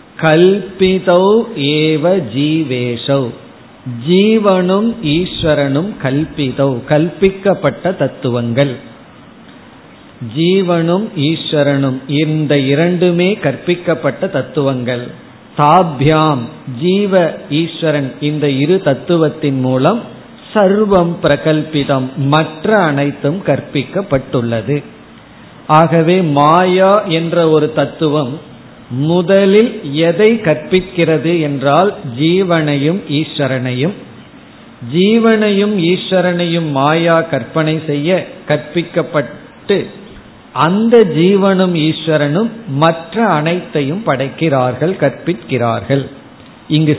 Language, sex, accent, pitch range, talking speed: Tamil, male, native, 140-180 Hz, 55 wpm